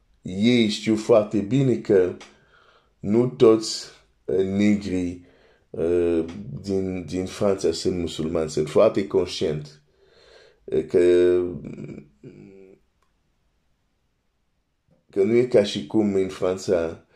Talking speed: 80 wpm